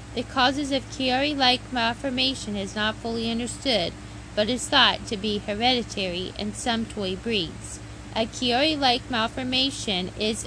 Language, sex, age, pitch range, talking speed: English, female, 20-39, 210-255 Hz, 145 wpm